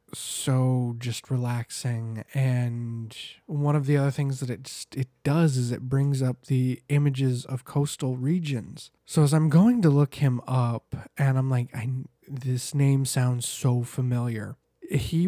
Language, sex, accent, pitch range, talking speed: English, male, American, 130-150 Hz, 160 wpm